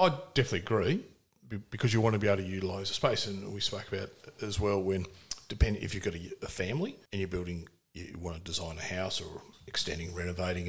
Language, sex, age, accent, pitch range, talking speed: English, male, 40-59, Australian, 85-110 Hz, 220 wpm